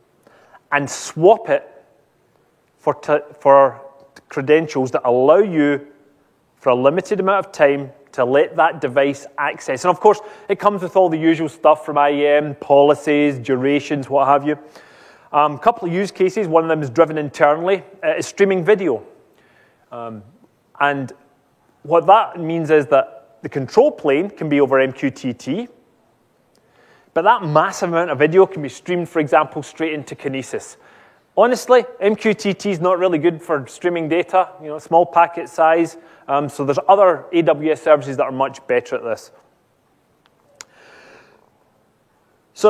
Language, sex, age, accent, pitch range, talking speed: English, male, 30-49, British, 145-185 Hz, 155 wpm